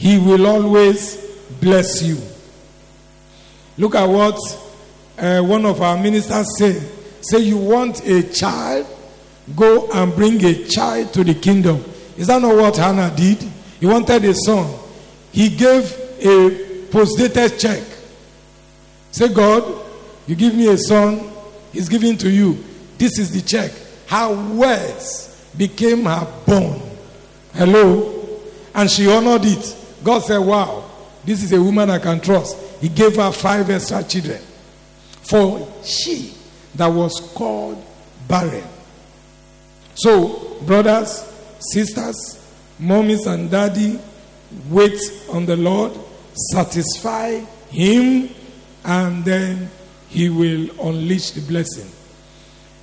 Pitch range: 175-215 Hz